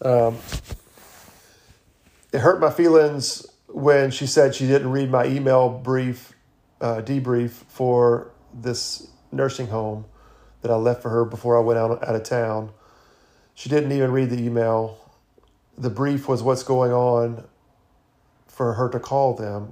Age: 40-59